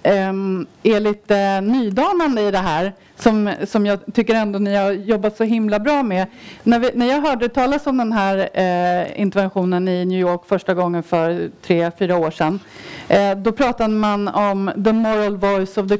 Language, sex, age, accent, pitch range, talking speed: Swedish, female, 30-49, native, 195-230 Hz, 175 wpm